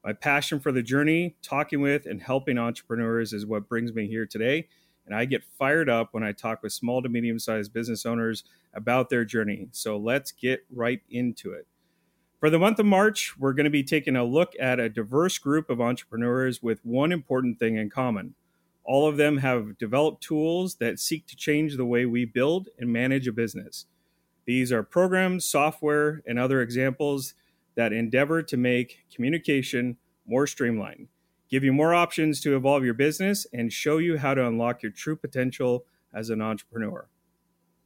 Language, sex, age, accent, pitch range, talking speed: English, male, 30-49, American, 120-155 Hz, 185 wpm